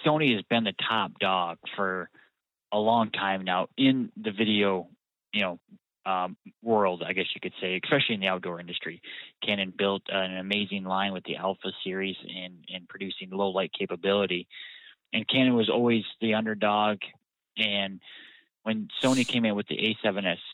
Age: 20-39